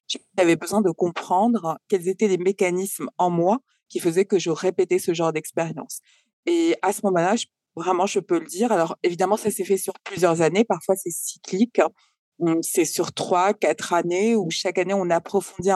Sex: female